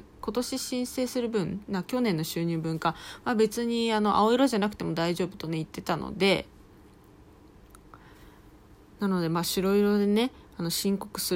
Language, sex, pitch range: Japanese, female, 170-230 Hz